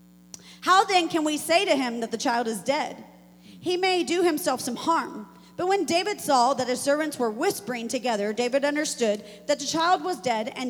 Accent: American